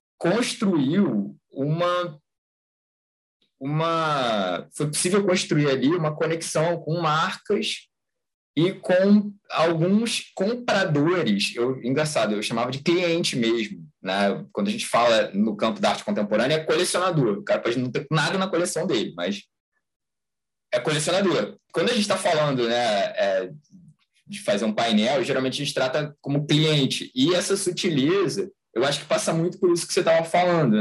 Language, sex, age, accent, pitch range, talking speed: Portuguese, male, 20-39, Brazilian, 130-180 Hz, 145 wpm